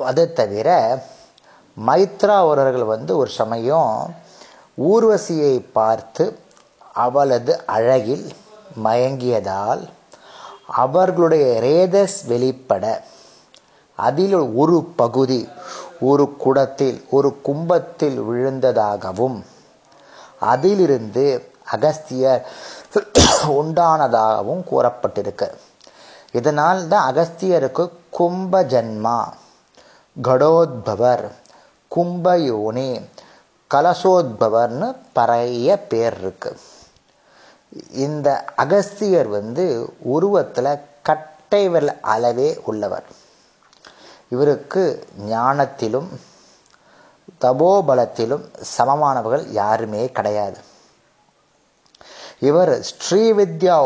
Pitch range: 120-175 Hz